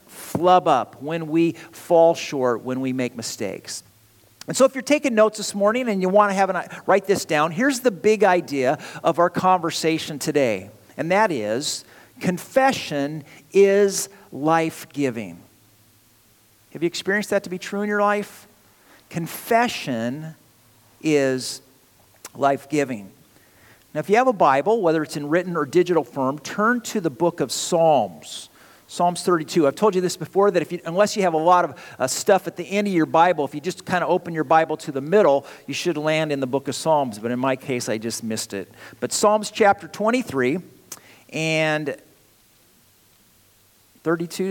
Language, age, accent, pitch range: English, 50-69, American, 130-185 Hz